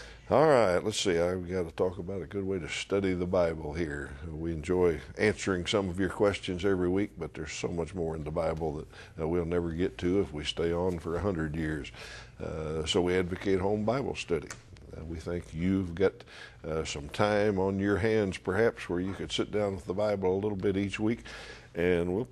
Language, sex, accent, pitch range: English, male, American, 80-100 Hz